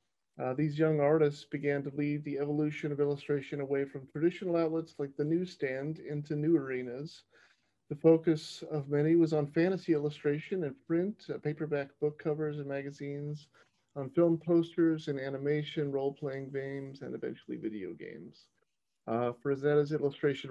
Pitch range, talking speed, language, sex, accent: 140-160 Hz, 150 wpm, English, male, American